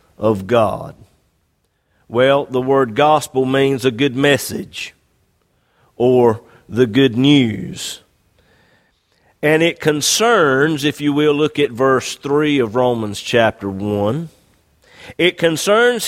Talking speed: 110 wpm